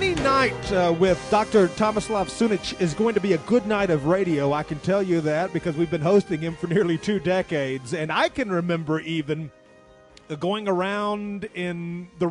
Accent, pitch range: American, 140-195 Hz